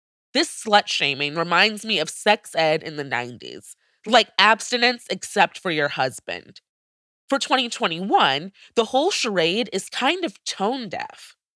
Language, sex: English, female